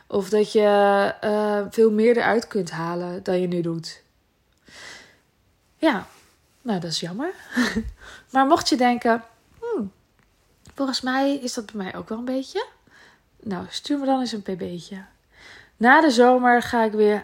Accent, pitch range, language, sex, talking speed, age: Dutch, 185-245 Hz, Dutch, female, 160 wpm, 20-39